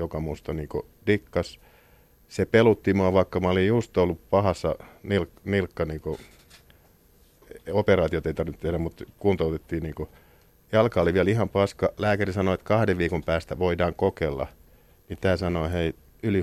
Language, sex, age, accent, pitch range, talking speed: Finnish, male, 50-69, native, 80-95 Hz, 155 wpm